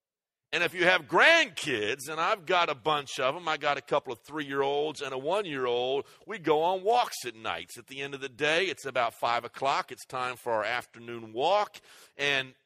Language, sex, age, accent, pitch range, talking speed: English, male, 50-69, American, 140-215 Hz, 210 wpm